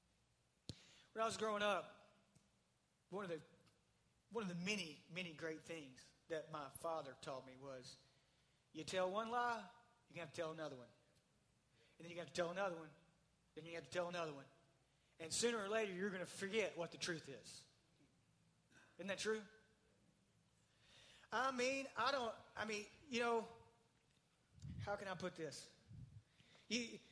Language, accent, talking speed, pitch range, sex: English, American, 165 wpm, 160-215 Hz, male